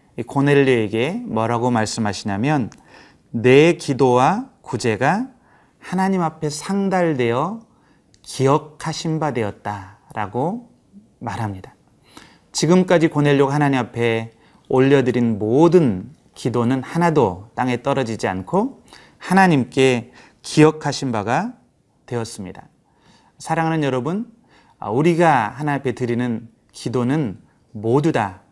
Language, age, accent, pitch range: Korean, 30-49, native, 120-160 Hz